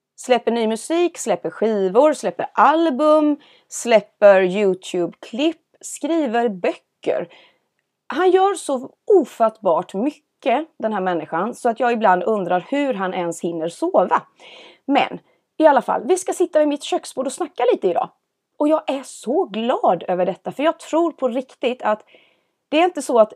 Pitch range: 205-320 Hz